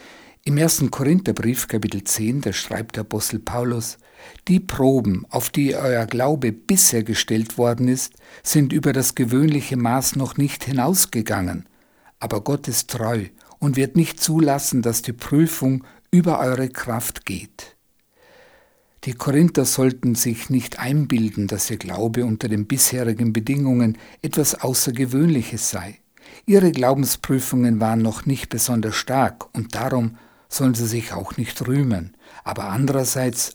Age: 60-79